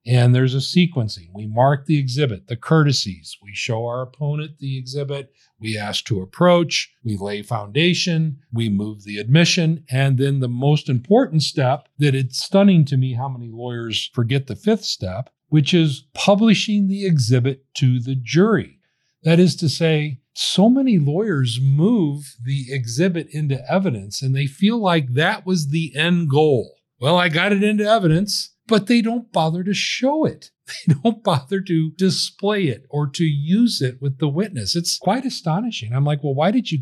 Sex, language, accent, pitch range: male, English, American, 120-170 Hz